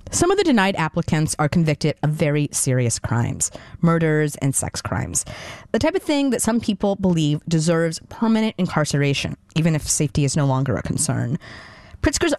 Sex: female